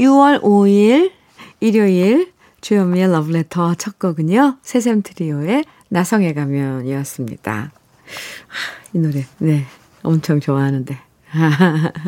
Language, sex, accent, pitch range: Korean, female, native, 155-235 Hz